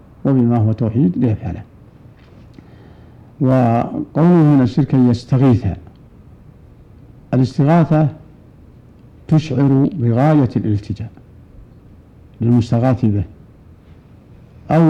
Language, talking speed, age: Arabic, 60 wpm, 60-79